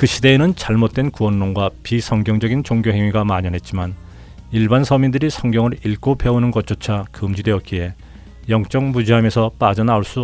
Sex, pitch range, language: male, 85-125 Hz, Korean